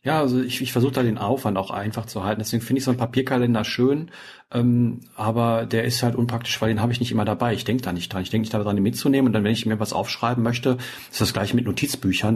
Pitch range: 95-120 Hz